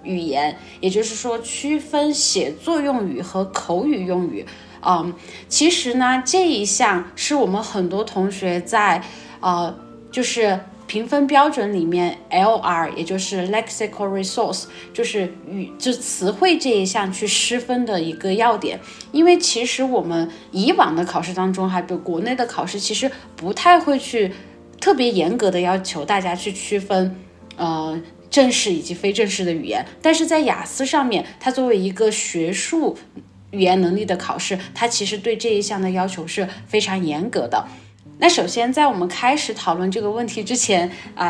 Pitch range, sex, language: 180-250 Hz, female, Chinese